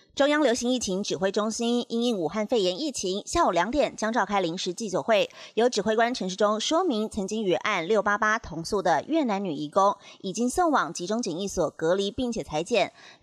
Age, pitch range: 30-49, 190-260 Hz